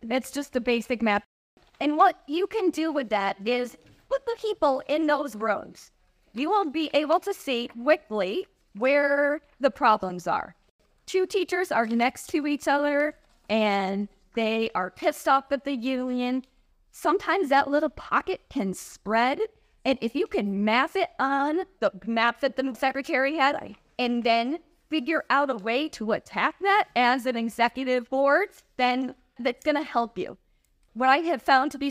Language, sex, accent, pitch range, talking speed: English, female, American, 220-290 Hz, 165 wpm